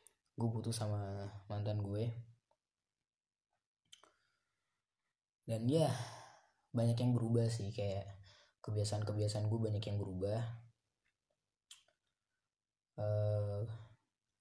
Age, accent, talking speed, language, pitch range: 20-39, native, 75 wpm, Indonesian, 100-115 Hz